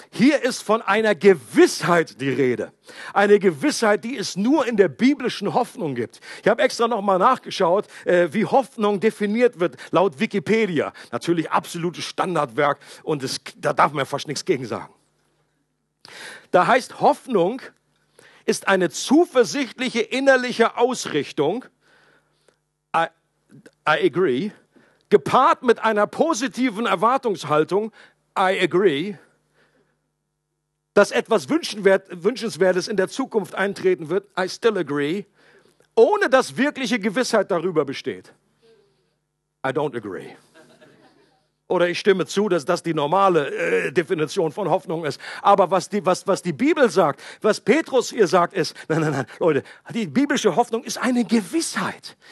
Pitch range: 195-270 Hz